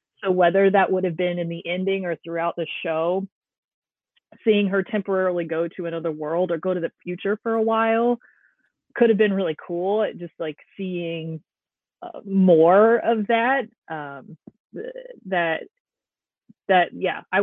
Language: English